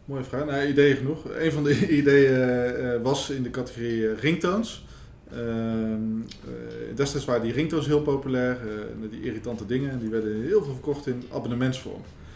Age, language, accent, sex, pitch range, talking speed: 20-39, Dutch, Dutch, male, 110-135 Hz, 150 wpm